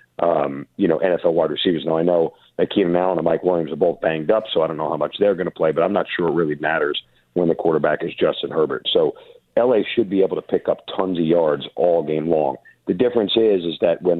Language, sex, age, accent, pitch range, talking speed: English, male, 50-69, American, 85-110 Hz, 260 wpm